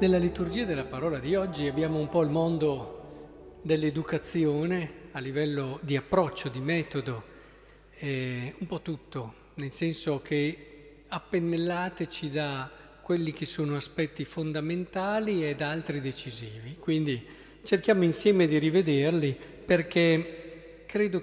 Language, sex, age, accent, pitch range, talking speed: Italian, male, 50-69, native, 135-175 Hz, 120 wpm